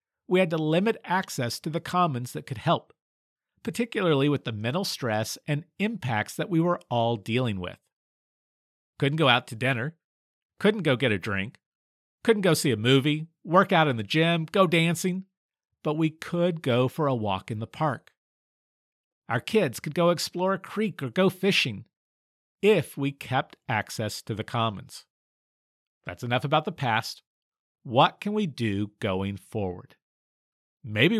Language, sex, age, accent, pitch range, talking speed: English, male, 50-69, American, 120-175 Hz, 165 wpm